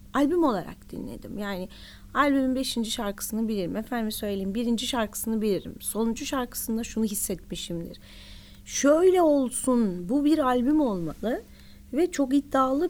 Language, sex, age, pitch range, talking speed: Turkish, female, 30-49, 195-280 Hz, 120 wpm